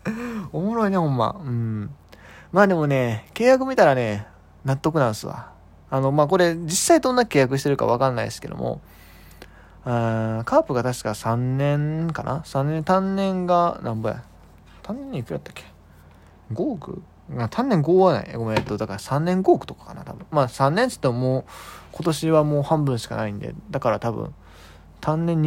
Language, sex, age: Japanese, male, 20-39